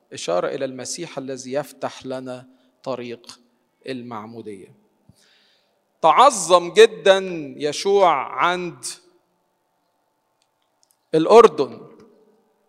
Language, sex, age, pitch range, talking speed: Arabic, male, 40-59, 140-185 Hz, 60 wpm